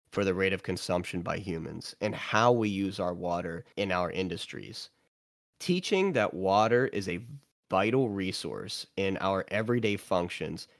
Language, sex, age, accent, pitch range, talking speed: English, male, 30-49, American, 95-120 Hz, 150 wpm